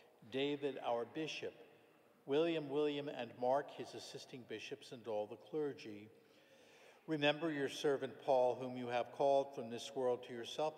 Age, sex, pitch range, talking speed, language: 60-79, male, 120-145 Hz, 150 wpm, English